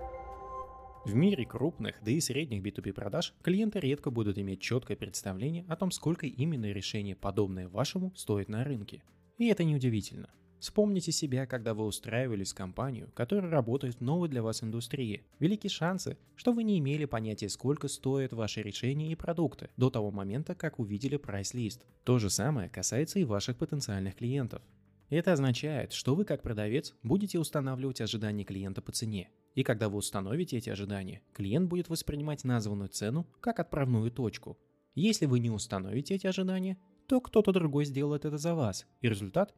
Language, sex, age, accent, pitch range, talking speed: Russian, male, 20-39, native, 105-160 Hz, 165 wpm